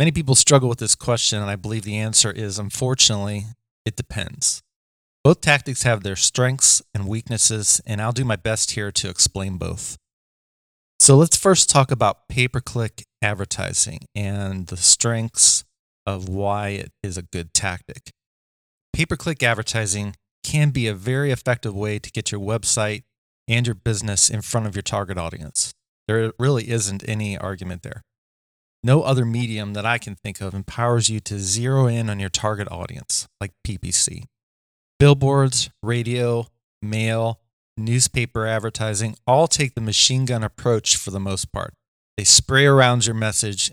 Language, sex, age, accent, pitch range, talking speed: English, male, 30-49, American, 100-125 Hz, 155 wpm